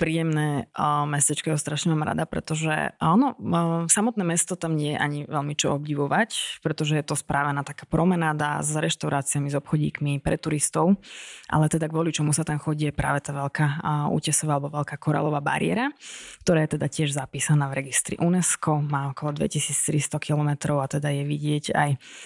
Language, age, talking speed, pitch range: Slovak, 20-39, 170 wpm, 145-165 Hz